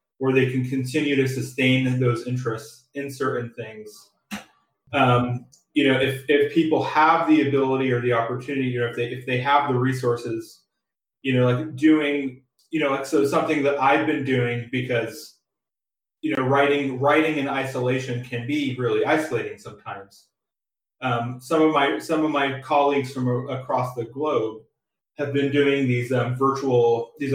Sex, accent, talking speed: male, American, 165 wpm